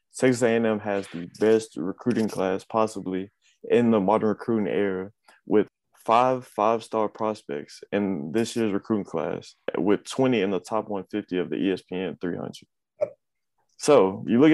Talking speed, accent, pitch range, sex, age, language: 145 wpm, American, 100-115 Hz, male, 20-39, English